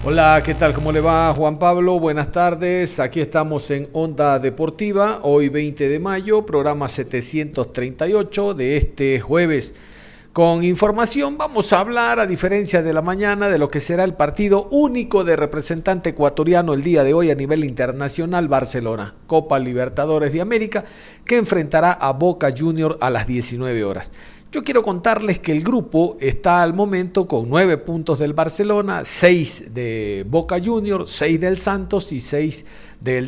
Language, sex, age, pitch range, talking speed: Spanish, male, 50-69, 145-190 Hz, 160 wpm